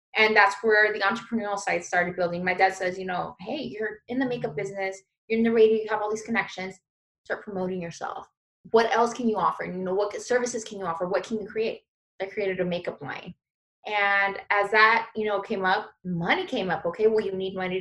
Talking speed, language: 230 wpm, English